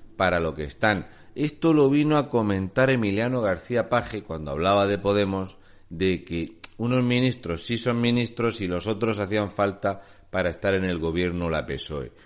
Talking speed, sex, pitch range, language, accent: 170 wpm, male, 90-115 Hz, Spanish, Spanish